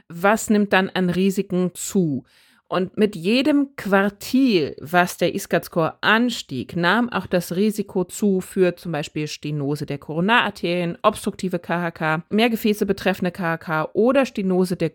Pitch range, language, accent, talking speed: 170-230 Hz, German, German, 135 wpm